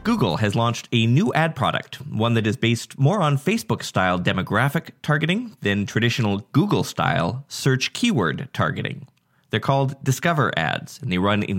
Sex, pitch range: male, 105-140 Hz